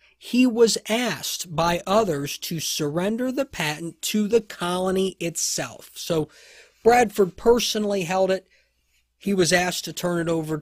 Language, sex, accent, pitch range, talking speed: English, male, American, 155-210 Hz, 140 wpm